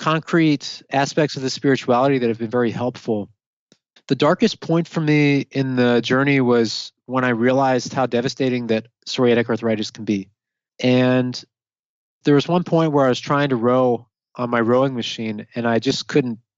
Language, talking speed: English, 175 wpm